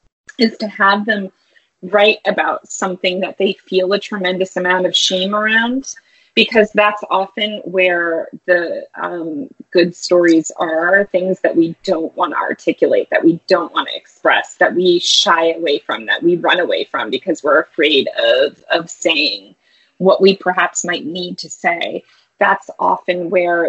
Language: English